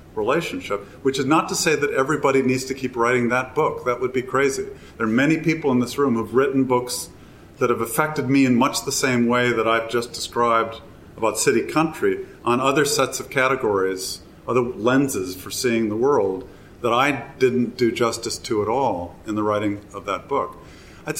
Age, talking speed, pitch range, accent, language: 50-69, 200 wpm, 115-140 Hz, American, English